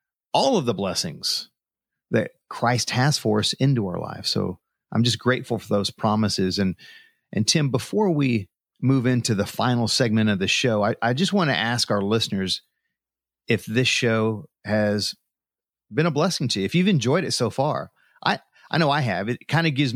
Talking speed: 190 wpm